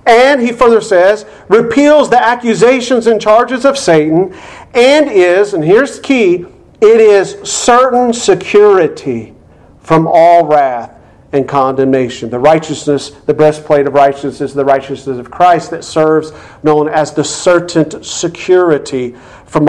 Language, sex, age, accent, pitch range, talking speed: English, male, 50-69, American, 145-215 Hz, 135 wpm